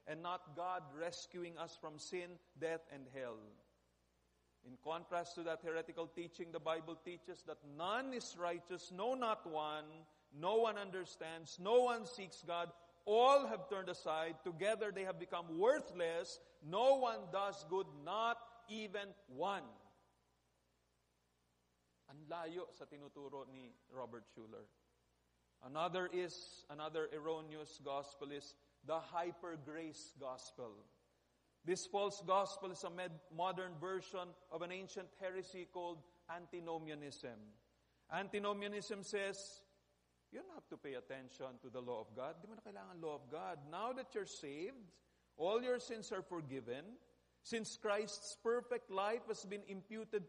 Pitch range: 155-220 Hz